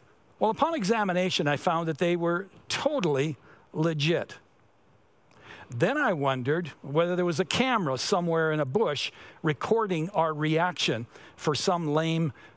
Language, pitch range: English, 145-200 Hz